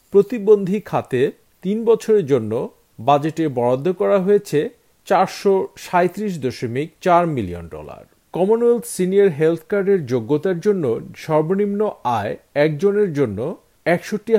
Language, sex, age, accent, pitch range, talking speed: Bengali, male, 50-69, native, 130-205 Hz, 95 wpm